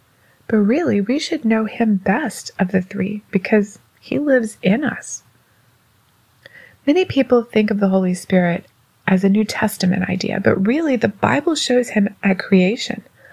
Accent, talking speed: American, 160 wpm